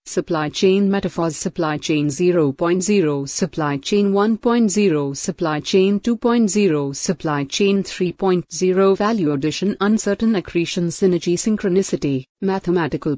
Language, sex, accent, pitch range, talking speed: English, female, Indian, 155-200 Hz, 100 wpm